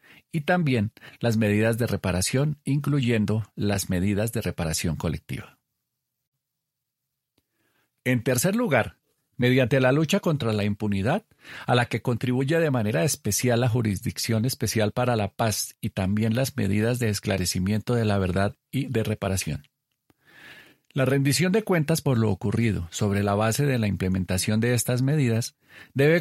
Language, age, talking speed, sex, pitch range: Spanish, 40-59, 145 wpm, male, 105-135 Hz